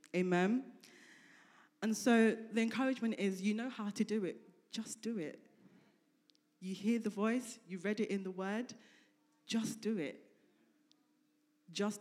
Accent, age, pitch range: British, 20-39, 190-245 Hz